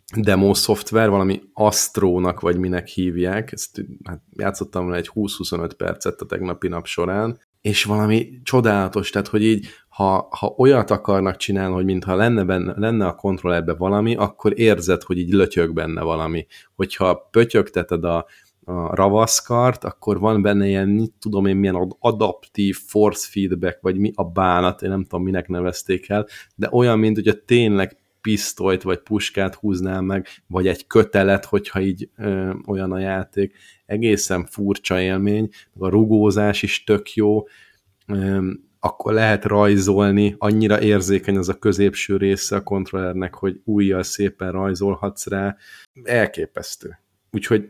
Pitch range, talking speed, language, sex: 90-105 Hz, 145 wpm, Hungarian, male